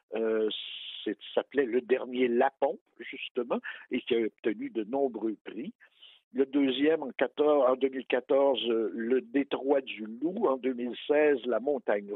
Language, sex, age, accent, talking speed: French, male, 60-79, French, 170 wpm